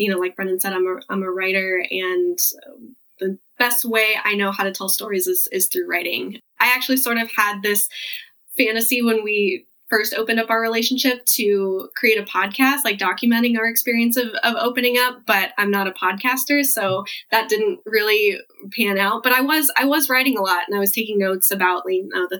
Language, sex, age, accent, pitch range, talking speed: English, female, 10-29, American, 195-250 Hz, 210 wpm